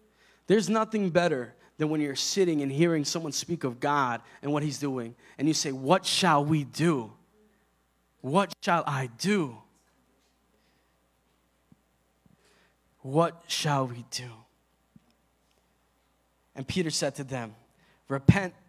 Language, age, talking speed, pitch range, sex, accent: English, 20-39, 120 wpm, 130-180 Hz, male, American